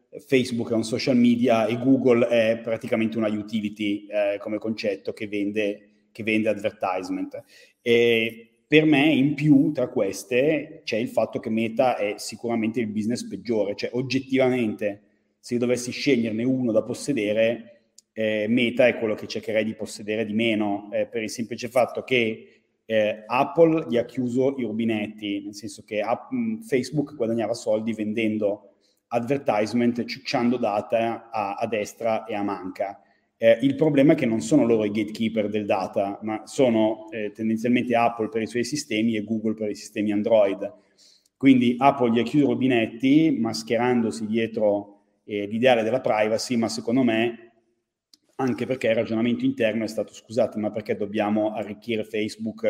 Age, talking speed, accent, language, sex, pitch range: 30-49, 155 wpm, native, Italian, male, 105-120 Hz